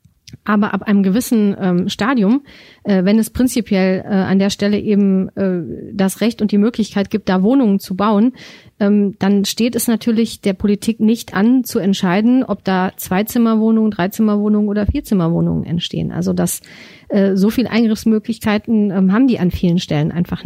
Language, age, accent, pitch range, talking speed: German, 40-59, German, 195-230 Hz, 160 wpm